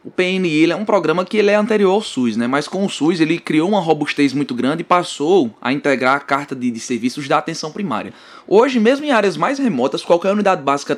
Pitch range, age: 130-205 Hz, 20-39